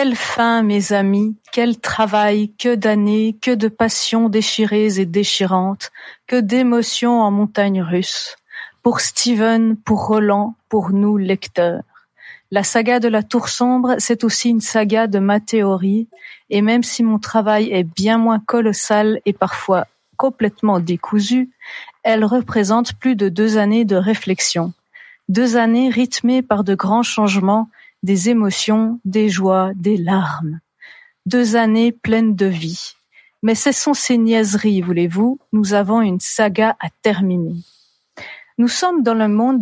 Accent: French